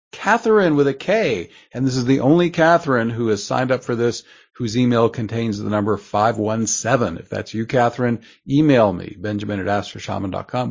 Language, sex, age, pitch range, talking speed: English, male, 50-69, 105-125 Hz, 175 wpm